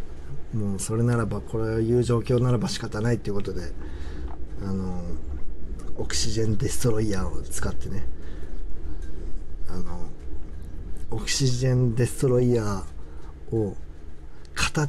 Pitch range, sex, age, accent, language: 75-115 Hz, male, 40-59, native, Japanese